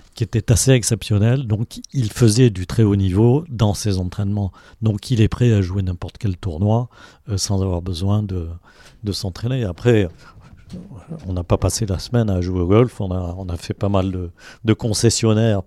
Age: 50-69